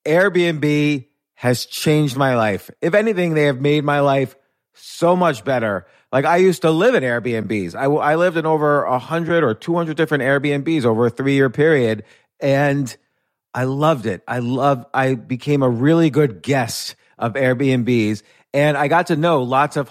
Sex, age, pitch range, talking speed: male, 30-49, 125-155 Hz, 180 wpm